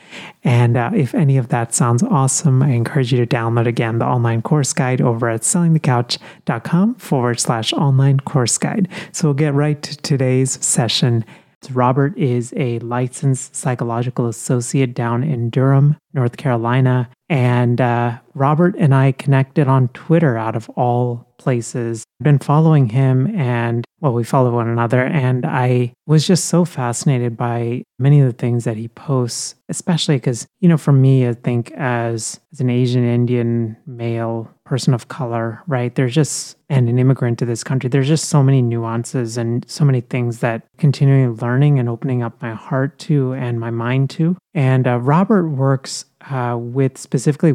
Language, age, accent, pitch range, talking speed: English, 30-49, American, 120-145 Hz, 170 wpm